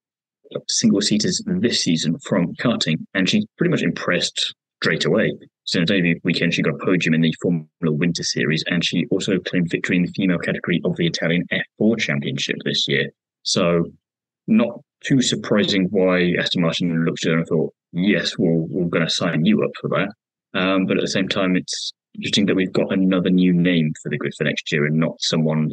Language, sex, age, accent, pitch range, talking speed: English, male, 20-39, British, 80-95 Hz, 210 wpm